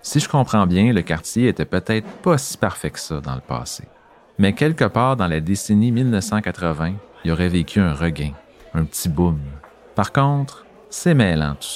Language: French